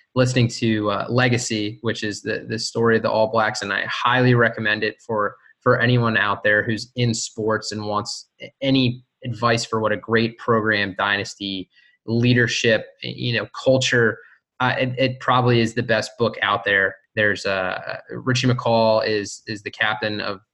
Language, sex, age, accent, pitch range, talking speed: English, male, 20-39, American, 105-120 Hz, 175 wpm